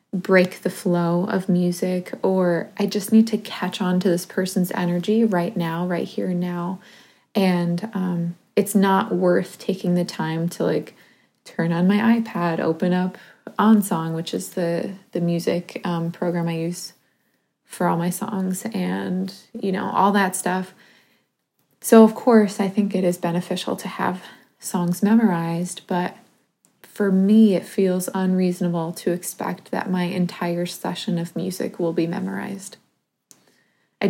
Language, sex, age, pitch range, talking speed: English, female, 20-39, 175-200 Hz, 155 wpm